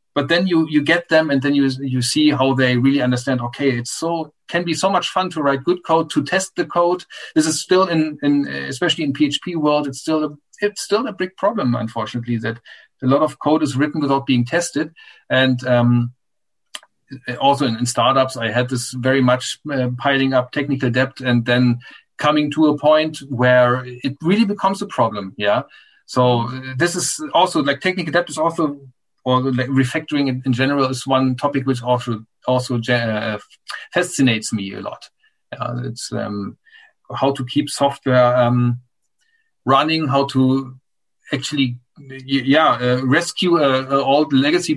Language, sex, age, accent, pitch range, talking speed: English, male, 50-69, German, 125-155 Hz, 175 wpm